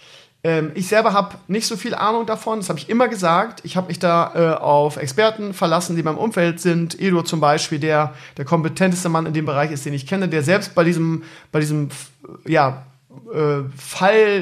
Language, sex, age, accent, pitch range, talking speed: German, male, 40-59, German, 150-180 Hz, 205 wpm